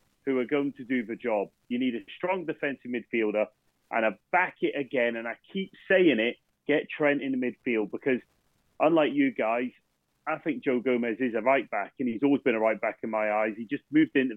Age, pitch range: 30-49, 110-135 Hz